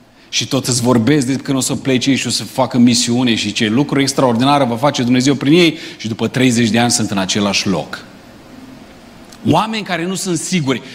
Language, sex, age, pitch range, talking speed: Romanian, male, 40-59, 125-170 Hz, 205 wpm